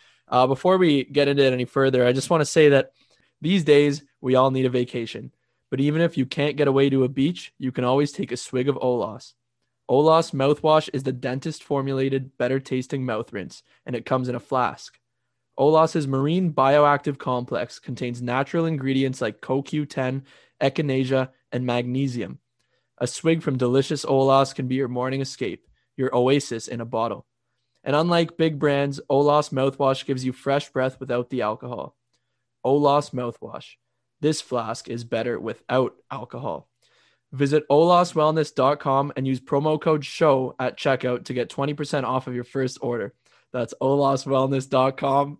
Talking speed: 160 wpm